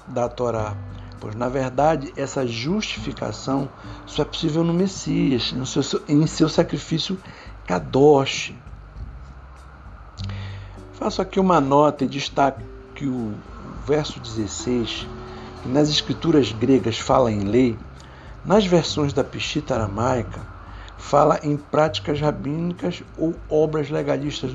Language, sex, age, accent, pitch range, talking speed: Portuguese, male, 60-79, Brazilian, 110-160 Hz, 115 wpm